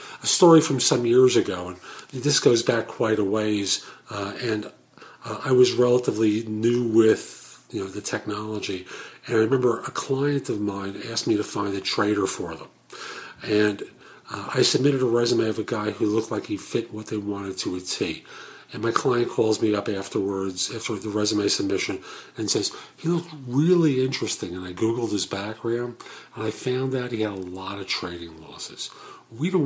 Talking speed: 190 wpm